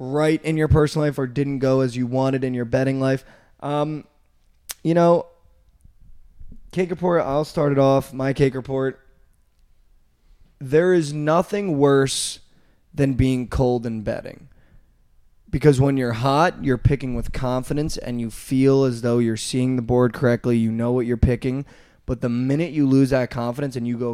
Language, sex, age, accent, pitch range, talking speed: English, male, 20-39, American, 115-135 Hz, 170 wpm